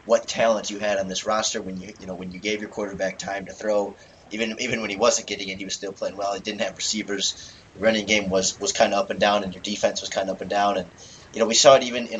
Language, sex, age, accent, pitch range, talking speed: English, male, 20-39, American, 95-110 Hz, 305 wpm